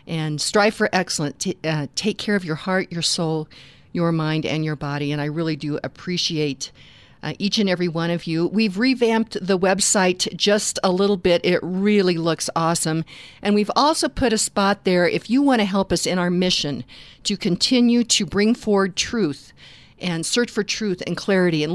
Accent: American